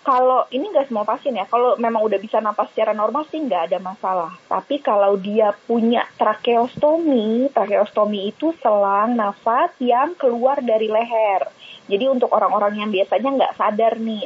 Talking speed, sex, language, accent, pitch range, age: 155 wpm, female, Indonesian, native, 210-260 Hz, 20-39